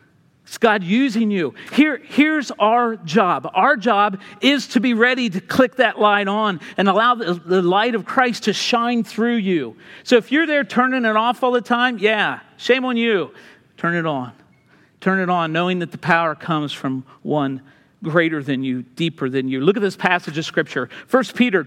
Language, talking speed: English, 195 wpm